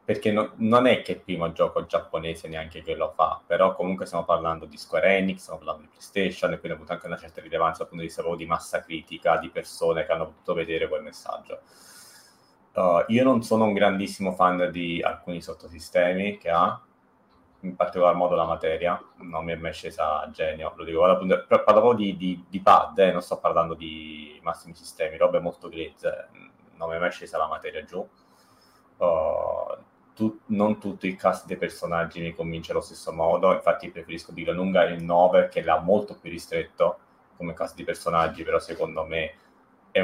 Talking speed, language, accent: 190 wpm, Italian, native